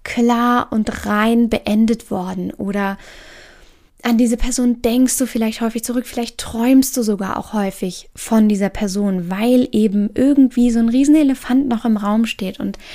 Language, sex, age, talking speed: German, female, 10-29, 160 wpm